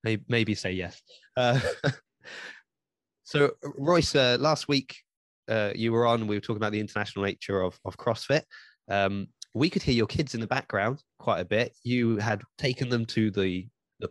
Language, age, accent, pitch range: English, 20-39, British, 100-125 Hz